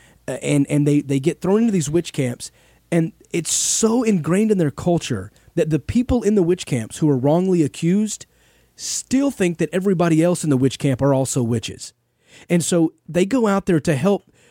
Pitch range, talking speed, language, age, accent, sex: 125-165 Hz, 200 wpm, English, 30-49, American, male